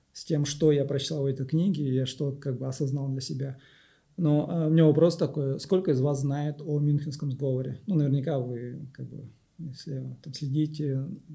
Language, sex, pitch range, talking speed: Russian, male, 135-155 Hz, 155 wpm